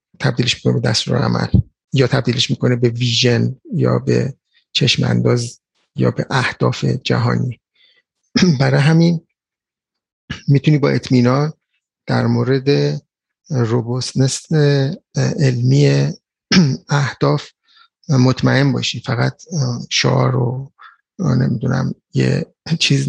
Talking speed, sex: 90 wpm, male